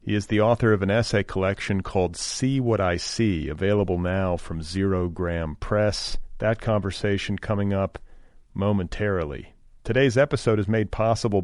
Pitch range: 100-120 Hz